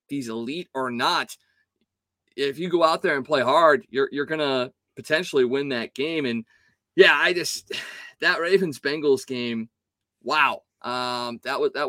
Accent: American